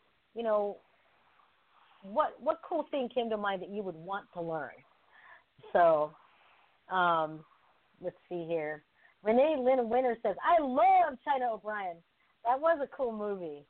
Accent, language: American, English